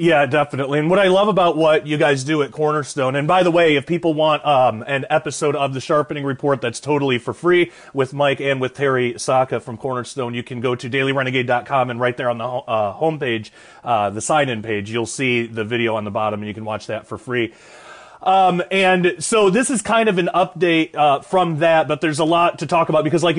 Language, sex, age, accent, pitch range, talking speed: English, male, 30-49, American, 130-170 Hz, 230 wpm